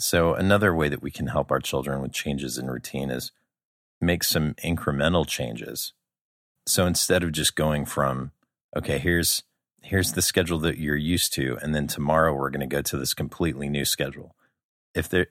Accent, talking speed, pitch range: American, 185 wpm, 70-85 Hz